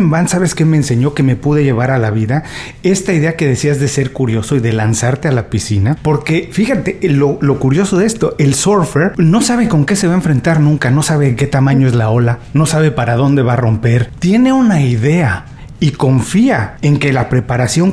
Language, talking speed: Spanish, 220 wpm